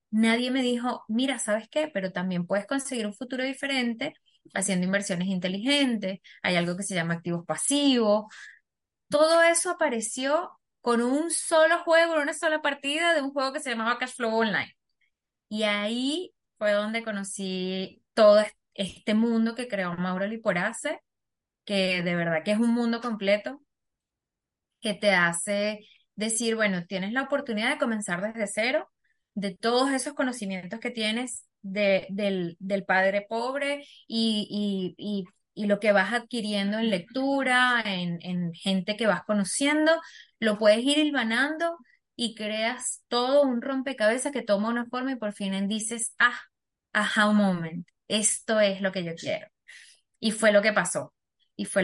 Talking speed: 155 wpm